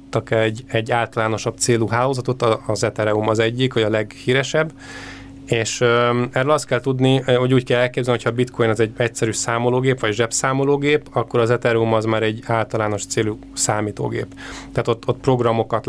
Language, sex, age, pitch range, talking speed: Hungarian, male, 20-39, 110-120 Hz, 165 wpm